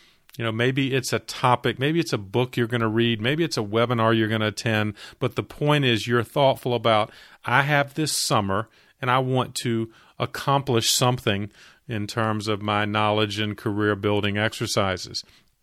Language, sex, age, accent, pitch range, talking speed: English, male, 40-59, American, 105-125 Hz, 185 wpm